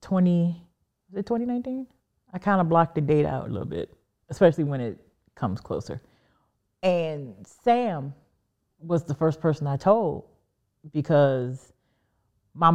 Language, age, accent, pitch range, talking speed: English, 40-59, American, 130-165 Hz, 130 wpm